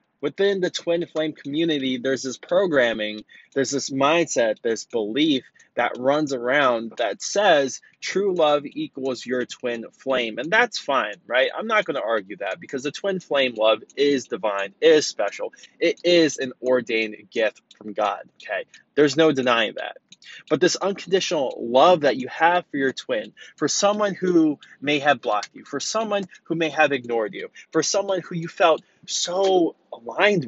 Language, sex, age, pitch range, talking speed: English, male, 20-39, 135-195 Hz, 170 wpm